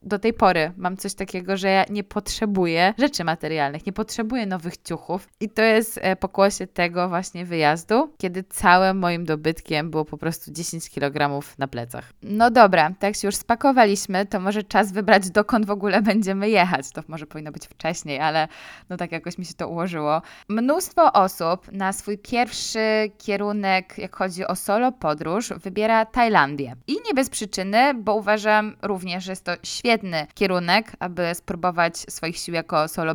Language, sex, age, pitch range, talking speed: Polish, female, 20-39, 175-220 Hz, 170 wpm